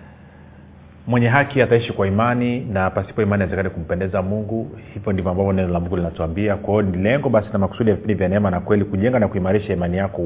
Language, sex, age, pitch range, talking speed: Swahili, male, 40-59, 90-110 Hz, 200 wpm